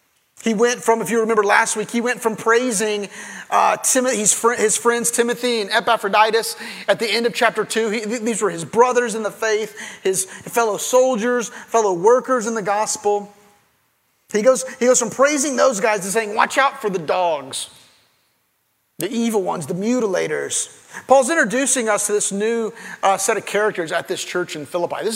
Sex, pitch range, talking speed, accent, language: male, 205-255 Hz, 180 wpm, American, English